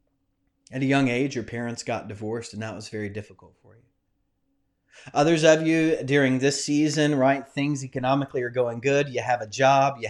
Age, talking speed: 30-49, 190 wpm